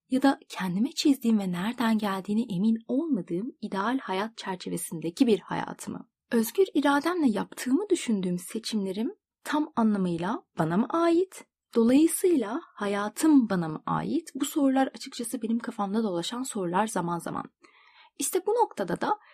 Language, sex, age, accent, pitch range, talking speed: Turkish, female, 30-49, native, 210-295 Hz, 130 wpm